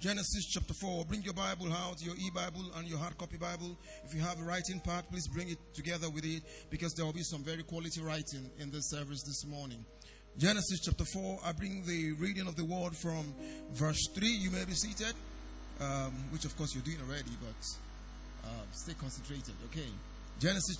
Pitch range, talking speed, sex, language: 115-175 Hz, 200 wpm, male, English